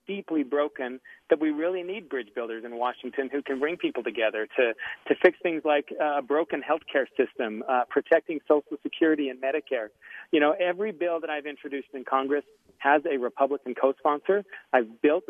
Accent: American